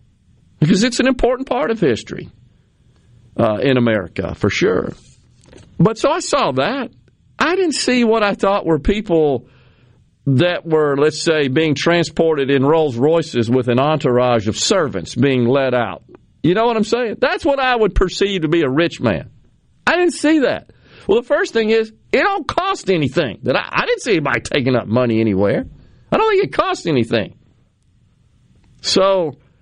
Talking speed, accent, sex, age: 175 wpm, American, male, 50-69